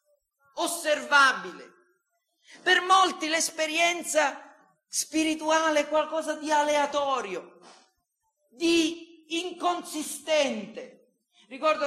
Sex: male